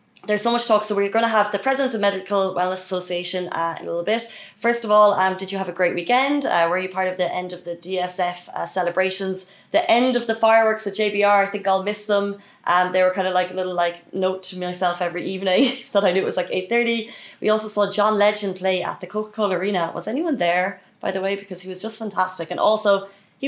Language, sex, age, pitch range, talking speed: Arabic, female, 20-39, 180-215 Hz, 255 wpm